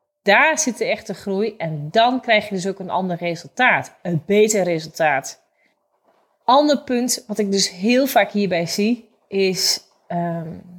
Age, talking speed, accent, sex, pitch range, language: 30-49, 155 wpm, Dutch, female, 175-215 Hz, Dutch